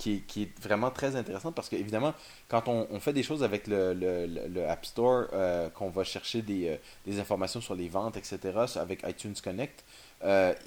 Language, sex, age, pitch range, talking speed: French, male, 30-49, 100-120 Hz, 210 wpm